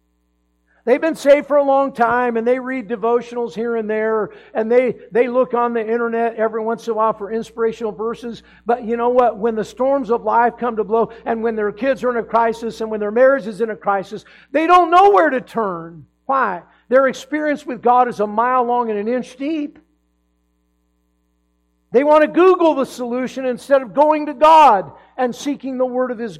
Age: 50-69